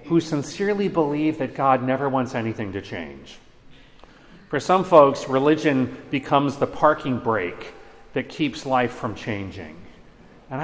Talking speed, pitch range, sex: 135 wpm, 125-160 Hz, male